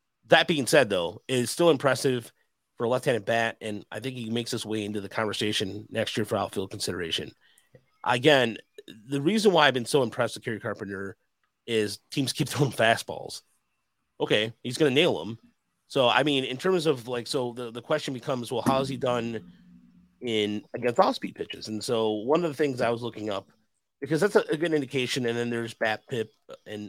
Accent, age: American, 30-49